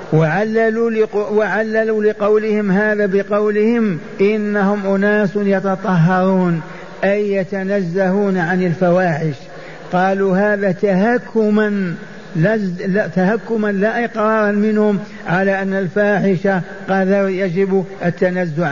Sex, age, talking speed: male, 50-69, 85 wpm